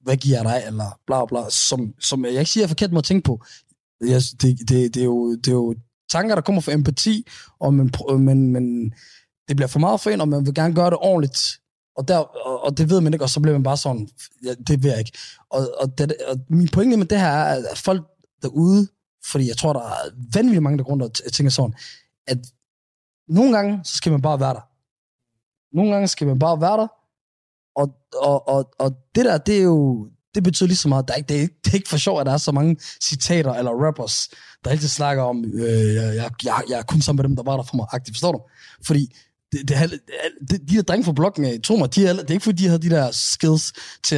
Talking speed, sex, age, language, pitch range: 250 wpm, male, 20-39, Danish, 125-165 Hz